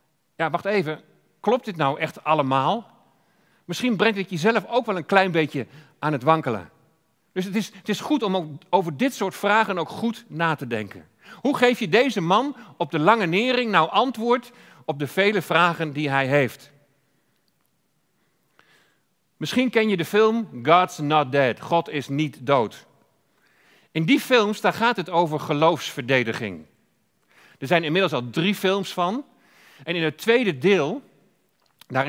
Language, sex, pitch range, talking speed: Dutch, male, 150-210 Hz, 165 wpm